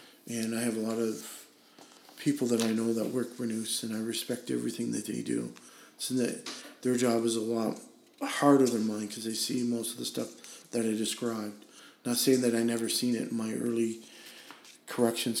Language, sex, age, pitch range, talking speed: English, male, 40-59, 115-125 Hz, 205 wpm